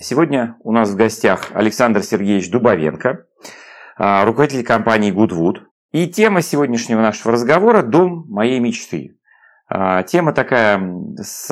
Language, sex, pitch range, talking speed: Russian, male, 110-145 Hz, 115 wpm